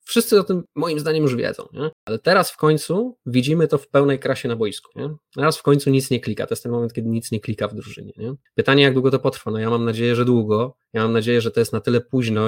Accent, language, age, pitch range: native, Polish, 20-39, 110-130 Hz